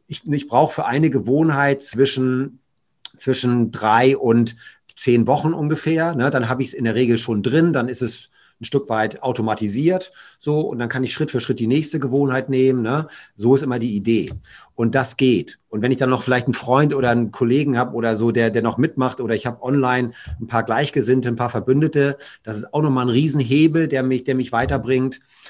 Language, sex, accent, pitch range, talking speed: German, male, German, 125-155 Hz, 210 wpm